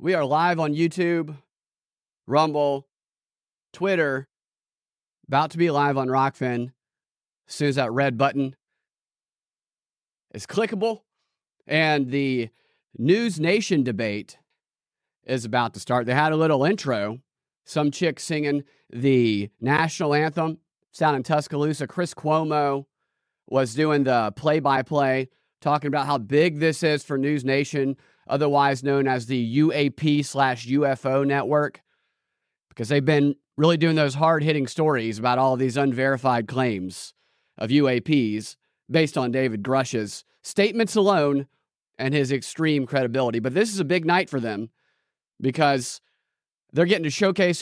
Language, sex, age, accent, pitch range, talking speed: English, male, 30-49, American, 130-155 Hz, 135 wpm